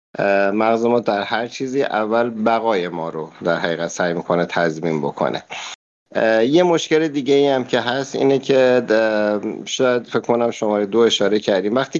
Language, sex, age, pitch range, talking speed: Persian, male, 50-69, 110-150 Hz, 150 wpm